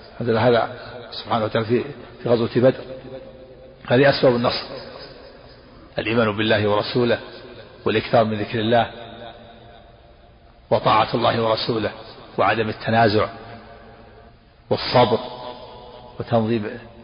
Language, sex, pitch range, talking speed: Arabic, male, 110-120 Hz, 80 wpm